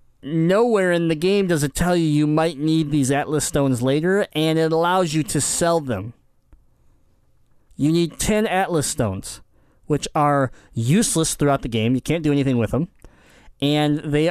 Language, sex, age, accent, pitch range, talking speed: English, male, 20-39, American, 130-170 Hz, 170 wpm